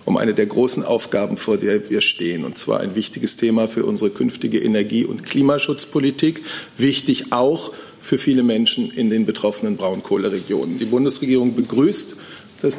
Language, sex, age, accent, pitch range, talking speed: German, male, 40-59, German, 120-155 Hz, 155 wpm